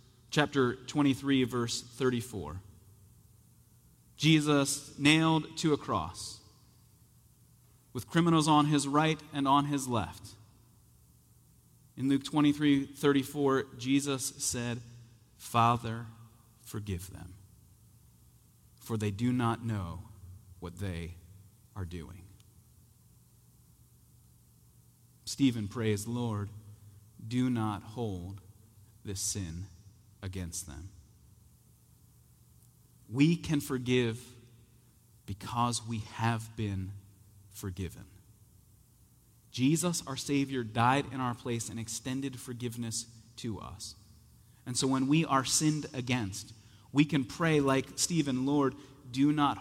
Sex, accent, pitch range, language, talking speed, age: male, American, 105-140 Hz, English, 100 wpm, 30-49